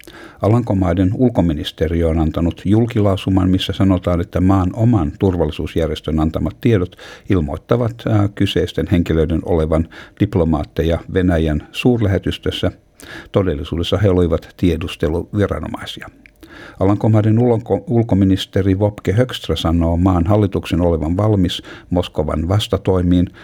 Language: Finnish